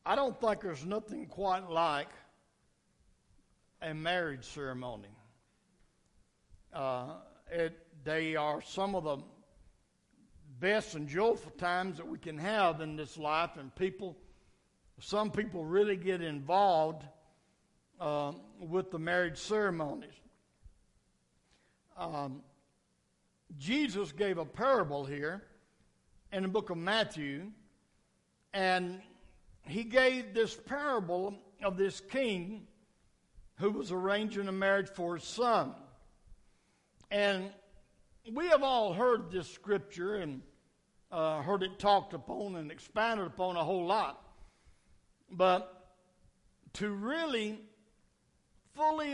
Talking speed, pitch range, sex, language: 110 wpm, 160-215 Hz, male, English